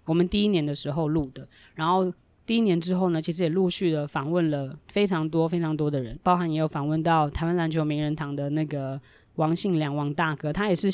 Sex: female